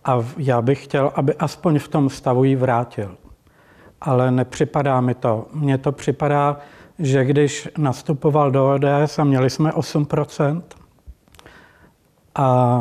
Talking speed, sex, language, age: 130 wpm, male, Czech, 60-79